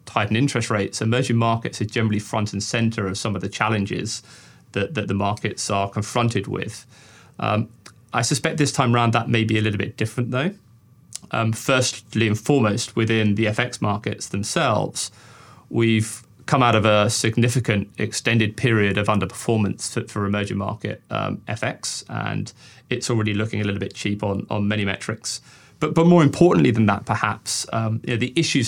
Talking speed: 170 wpm